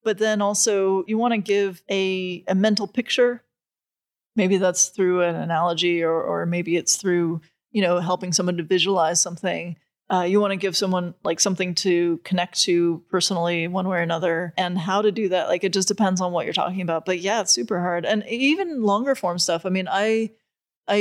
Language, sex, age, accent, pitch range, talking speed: English, female, 30-49, American, 175-205 Hz, 205 wpm